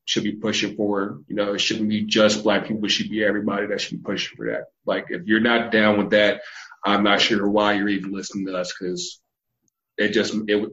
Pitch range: 105-110 Hz